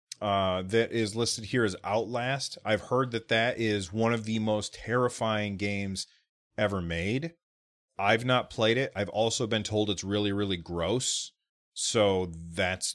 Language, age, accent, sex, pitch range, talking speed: English, 30-49, American, male, 95-115 Hz, 160 wpm